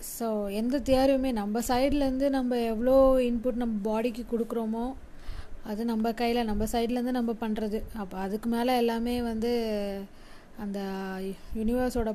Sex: female